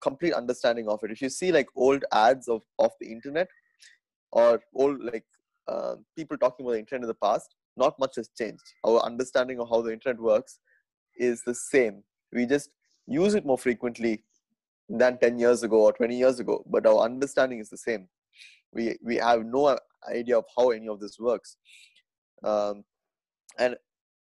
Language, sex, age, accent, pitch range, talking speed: Tamil, male, 20-39, native, 110-140 Hz, 180 wpm